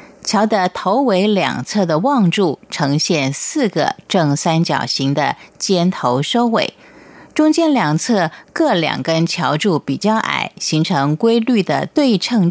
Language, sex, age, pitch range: Chinese, female, 30-49, 150-220 Hz